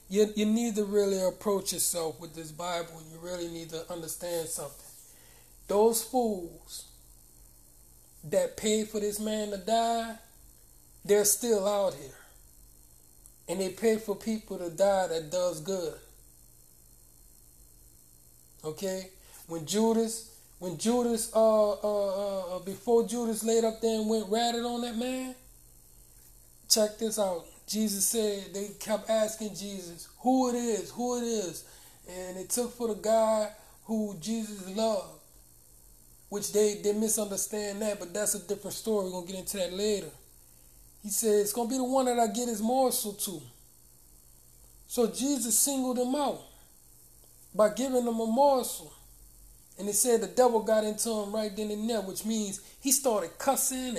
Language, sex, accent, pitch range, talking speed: English, male, American, 155-225 Hz, 155 wpm